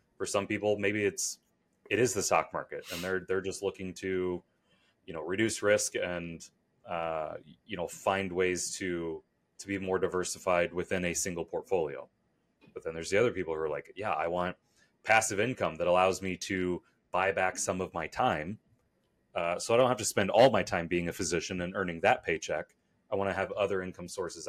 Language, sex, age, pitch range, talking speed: English, male, 30-49, 90-105 Hz, 205 wpm